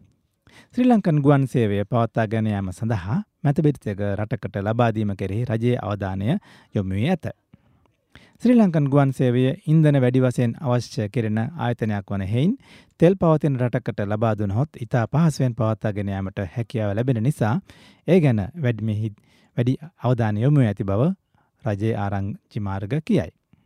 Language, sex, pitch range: Japanese, male, 105-145 Hz